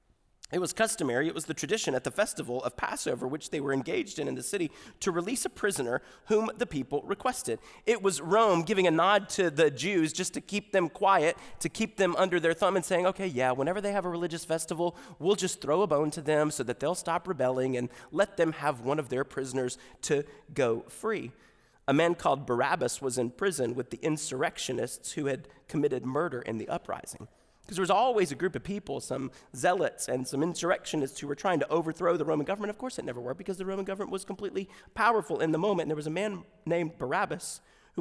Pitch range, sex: 135-195 Hz, male